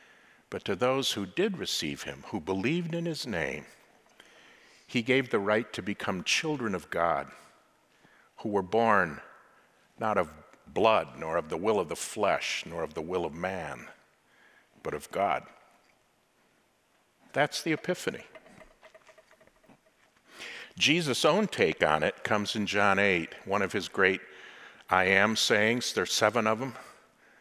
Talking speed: 145 wpm